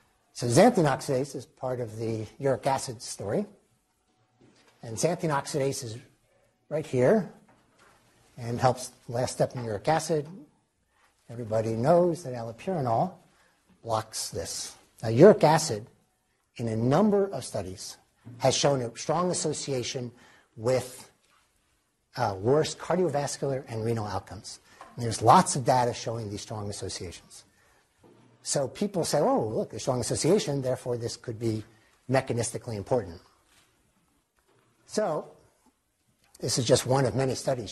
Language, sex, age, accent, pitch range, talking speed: English, male, 60-79, American, 110-140 Hz, 125 wpm